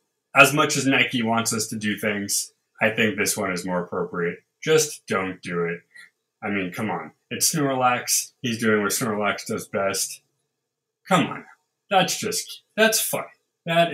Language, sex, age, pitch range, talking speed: English, male, 20-39, 120-170 Hz, 170 wpm